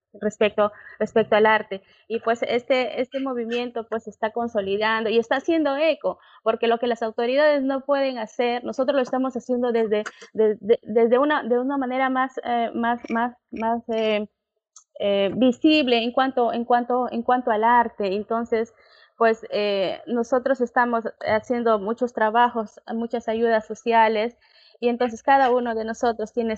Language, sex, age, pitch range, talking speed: Spanish, female, 20-39, 215-255 Hz, 135 wpm